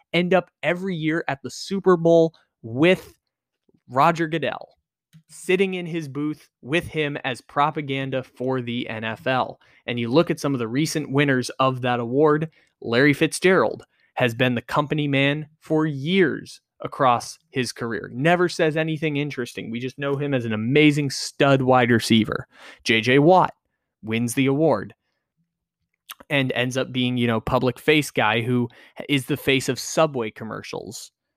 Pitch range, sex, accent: 125-155 Hz, male, American